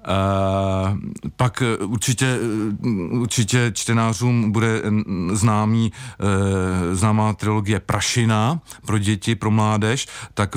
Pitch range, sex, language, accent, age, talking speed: 105-120 Hz, male, Czech, native, 40-59, 90 wpm